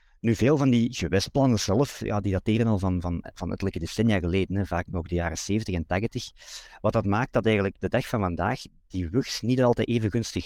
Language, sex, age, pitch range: Dutch, male, 50-69, 90-120 Hz